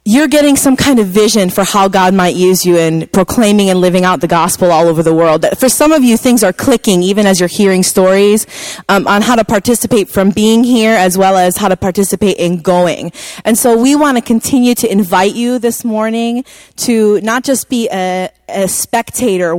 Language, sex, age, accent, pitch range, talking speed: English, female, 20-39, American, 190-245 Hz, 210 wpm